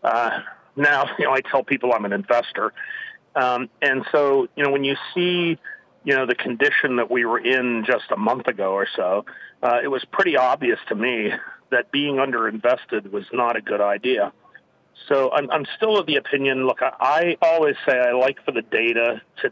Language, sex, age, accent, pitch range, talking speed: English, male, 40-59, American, 120-150 Hz, 200 wpm